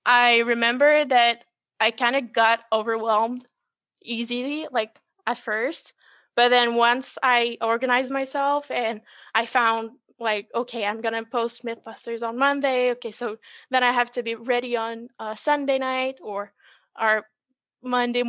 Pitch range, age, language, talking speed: 230-255 Hz, 10-29, English, 145 wpm